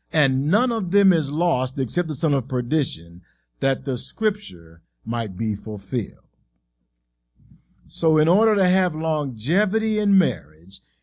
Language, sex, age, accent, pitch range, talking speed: English, male, 50-69, American, 130-185 Hz, 135 wpm